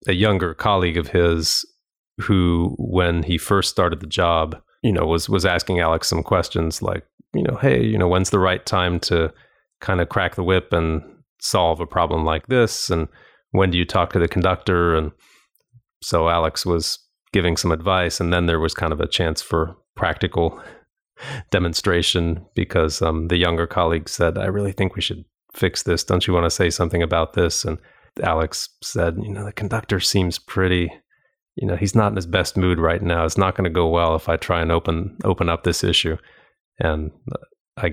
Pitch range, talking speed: 85-95 Hz, 200 wpm